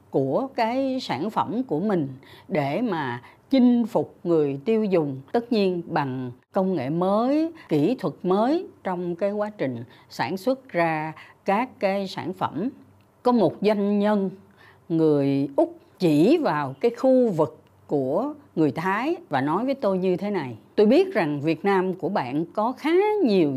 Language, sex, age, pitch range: Vietnamese, female, 60-79, 150-235 Hz